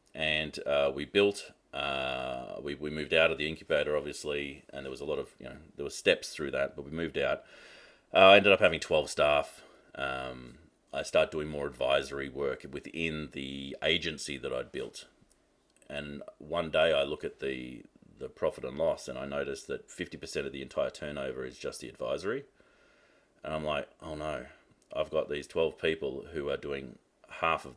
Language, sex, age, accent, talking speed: English, male, 30-49, Australian, 190 wpm